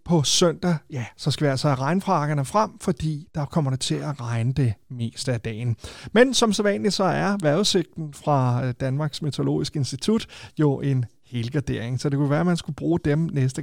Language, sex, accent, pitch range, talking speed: Danish, male, native, 130-165 Hz, 200 wpm